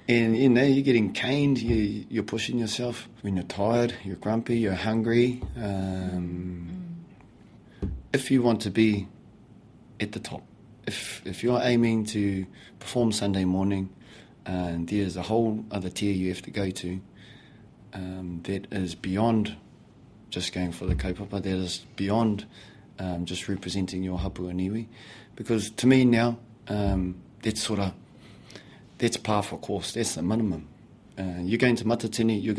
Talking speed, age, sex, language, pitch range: 155 wpm, 30-49, male, English, 95-115 Hz